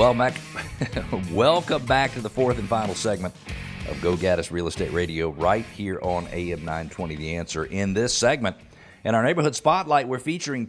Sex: male